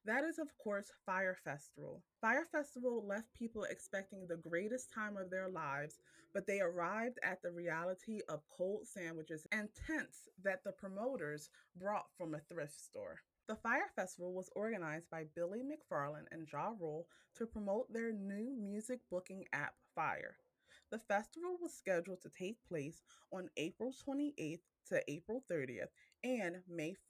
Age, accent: 20-39, American